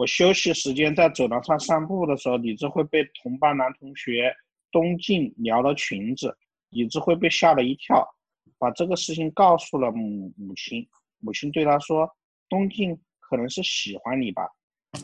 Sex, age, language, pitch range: male, 50-69, Chinese, 145-185 Hz